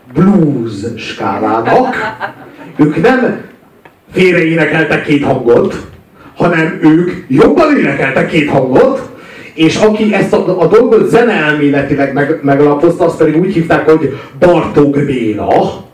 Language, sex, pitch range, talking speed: Hungarian, male, 145-205 Hz, 105 wpm